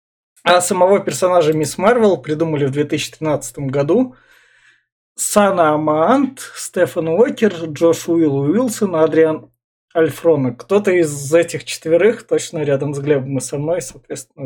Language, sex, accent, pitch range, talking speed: Russian, male, native, 140-175 Hz, 125 wpm